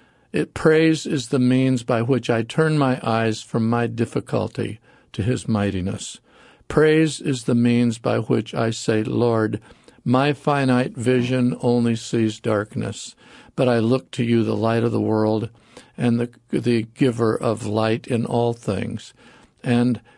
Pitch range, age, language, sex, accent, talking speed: 110-130 Hz, 50-69, English, male, American, 155 wpm